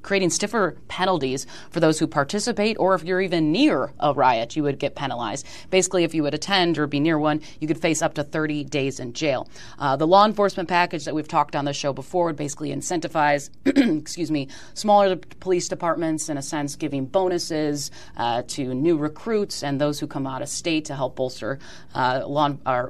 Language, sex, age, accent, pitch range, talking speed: English, female, 30-49, American, 140-175 Hz, 195 wpm